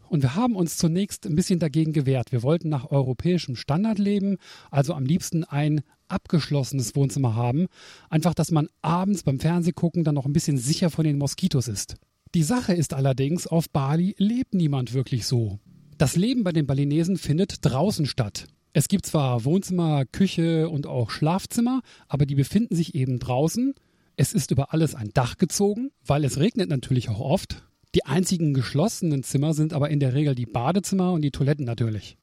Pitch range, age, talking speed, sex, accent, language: 135-175 Hz, 40-59, 180 wpm, male, German, German